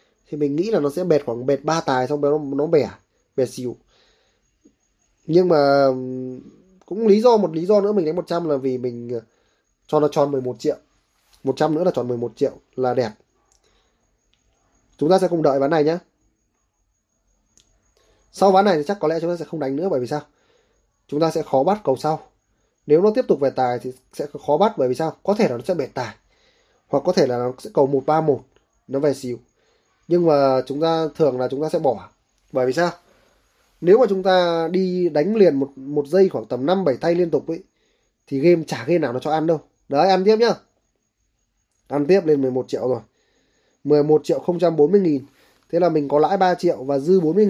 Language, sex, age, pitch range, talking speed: Vietnamese, male, 20-39, 135-175 Hz, 215 wpm